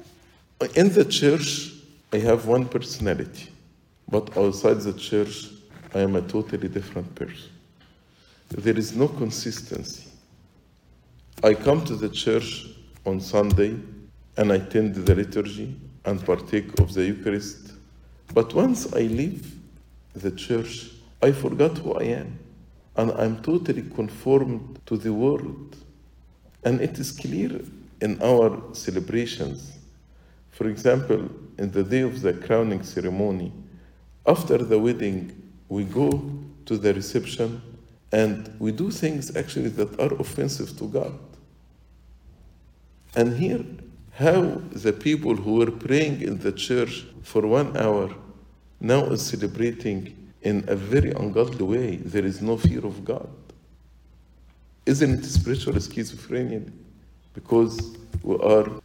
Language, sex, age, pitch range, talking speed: English, male, 50-69, 95-120 Hz, 130 wpm